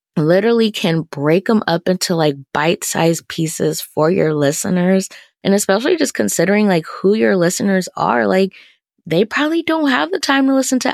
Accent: American